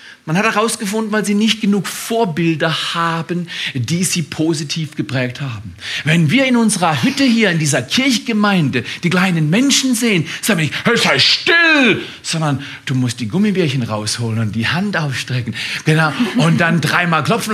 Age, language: 40-59, German